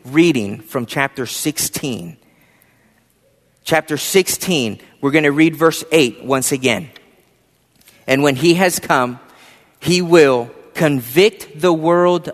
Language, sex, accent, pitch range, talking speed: English, male, American, 140-195 Hz, 115 wpm